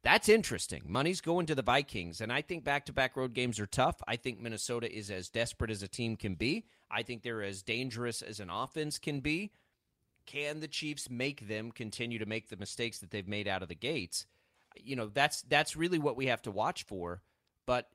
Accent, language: American, English